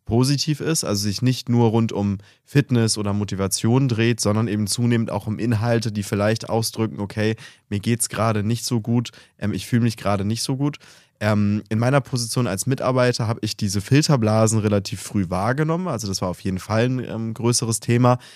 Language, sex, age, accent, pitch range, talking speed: German, male, 20-39, German, 100-120 Hz, 195 wpm